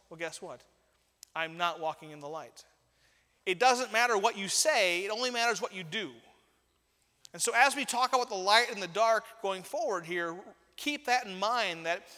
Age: 30-49